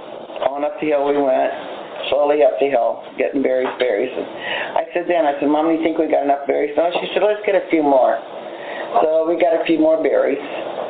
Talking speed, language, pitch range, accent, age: 230 wpm, English, 140-215 Hz, American, 40-59